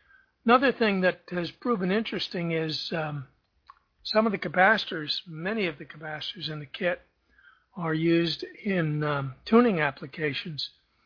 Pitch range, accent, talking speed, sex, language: 155-190 Hz, American, 135 wpm, male, English